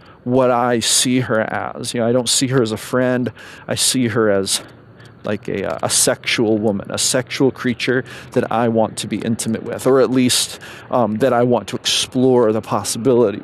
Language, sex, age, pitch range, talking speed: English, male, 40-59, 120-150 Hz, 195 wpm